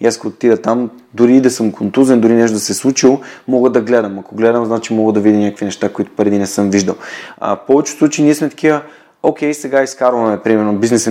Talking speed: 225 wpm